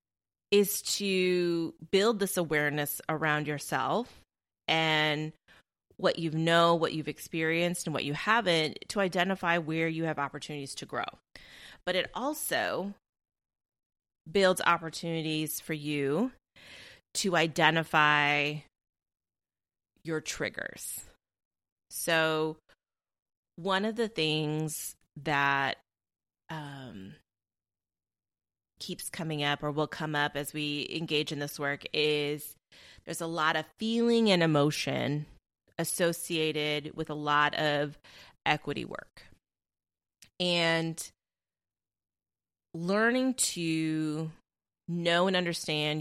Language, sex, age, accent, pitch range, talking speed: English, female, 30-49, American, 145-170 Hz, 100 wpm